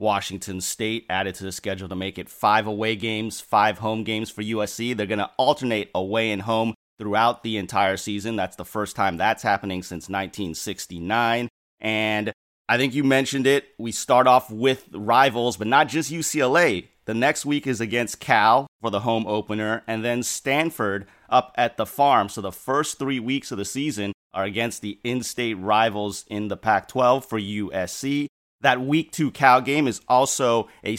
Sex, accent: male, American